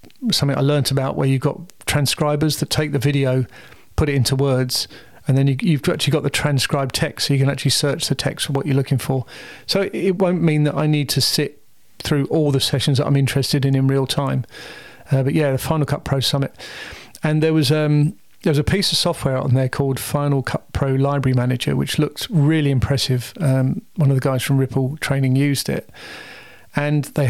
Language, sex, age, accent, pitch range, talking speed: English, male, 40-59, British, 135-150 Hz, 215 wpm